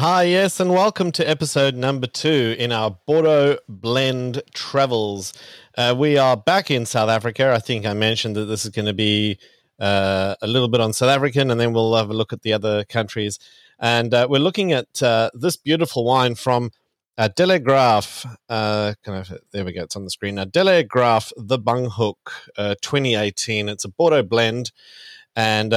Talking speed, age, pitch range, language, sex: 185 wpm, 30-49, 105-125 Hz, English, male